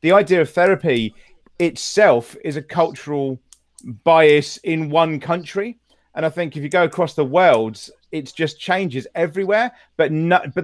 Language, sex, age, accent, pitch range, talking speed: English, male, 40-59, British, 145-190 Hz, 160 wpm